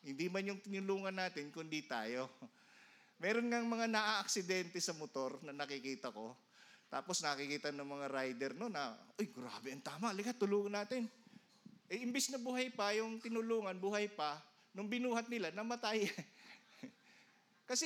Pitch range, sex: 145-235 Hz, male